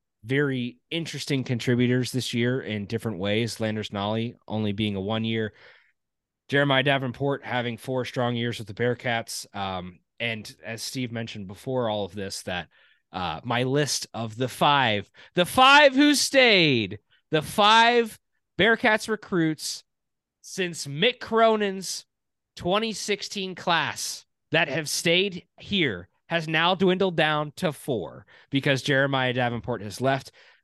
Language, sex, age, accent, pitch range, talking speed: English, male, 30-49, American, 110-160 Hz, 130 wpm